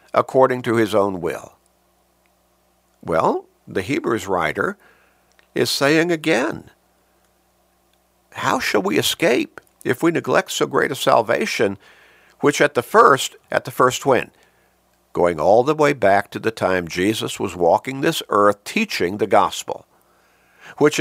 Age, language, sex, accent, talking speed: 60-79, English, male, American, 135 wpm